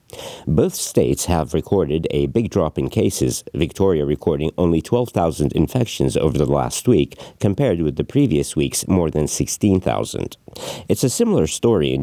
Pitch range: 70-90 Hz